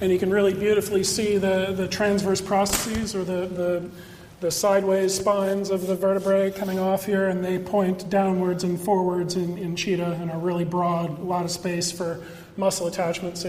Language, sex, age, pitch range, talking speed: English, male, 40-59, 165-195 Hz, 190 wpm